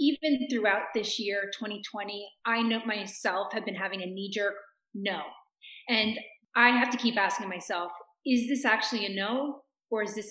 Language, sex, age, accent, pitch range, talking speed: English, female, 30-49, American, 200-245 Hz, 175 wpm